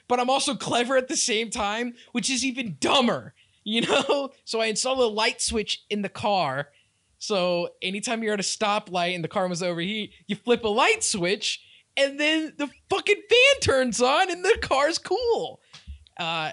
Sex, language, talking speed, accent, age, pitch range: male, English, 185 wpm, American, 20-39, 145-225 Hz